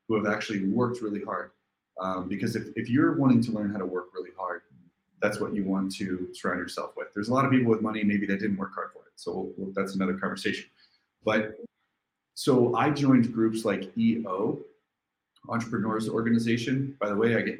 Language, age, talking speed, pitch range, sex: English, 30-49, 210 wpm, 100-115 Hz, male